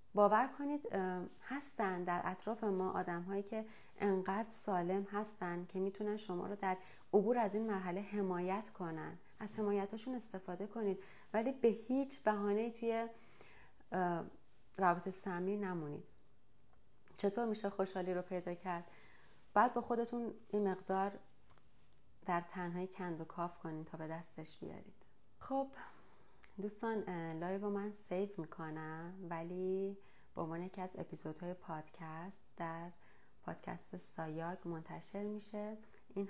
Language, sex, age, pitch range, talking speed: Persian, female, 30-49, 175-210 Hz, 125 wpm